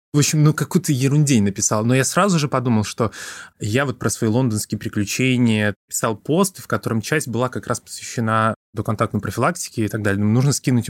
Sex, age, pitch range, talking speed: male, 20-39, 110-140 Hz, 200 wpm